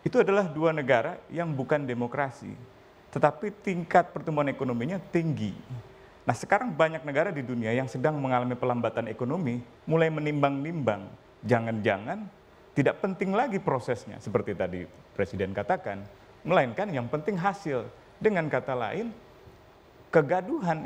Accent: Indonesian